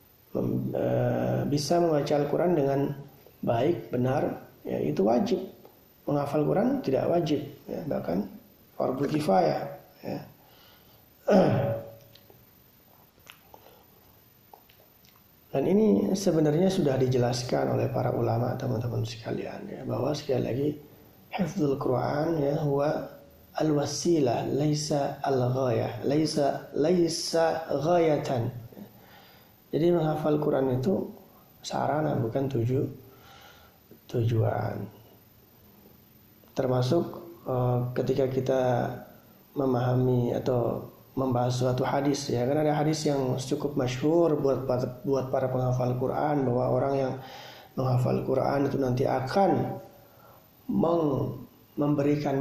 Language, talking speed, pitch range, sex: Indonesian, 90 wpm, 125-145 Hz, male